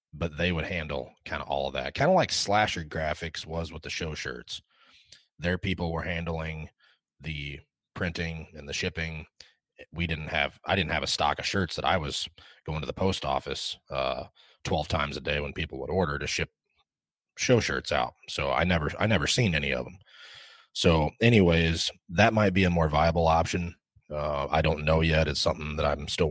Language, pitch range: English, 75-85 Hz